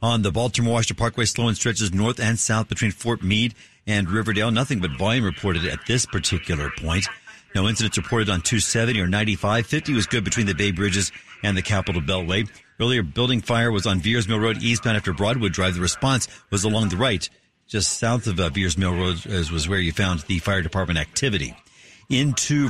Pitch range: 100-120 Hz